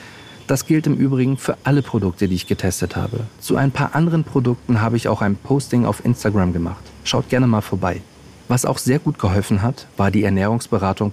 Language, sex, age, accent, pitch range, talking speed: German, male, 40-59, German, 105-135 Hz, 200 wpm